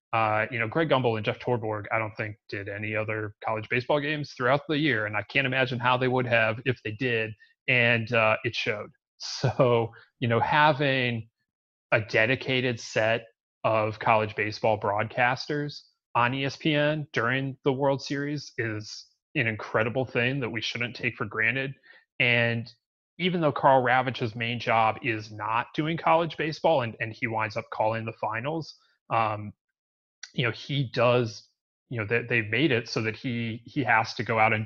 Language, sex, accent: English, male, American